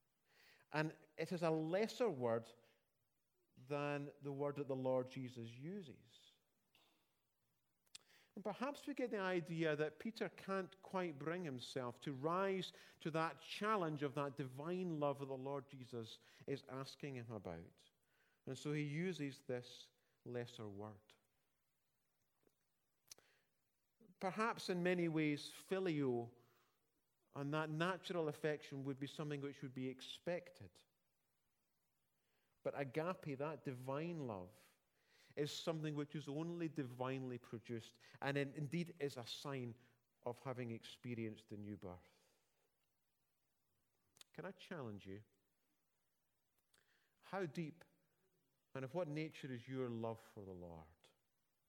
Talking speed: 125 wpm